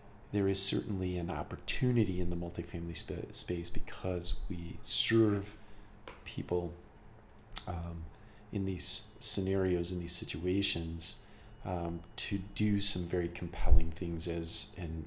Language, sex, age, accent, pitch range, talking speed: English, male, 40-59, American, 85-105 Hz, 120 wpm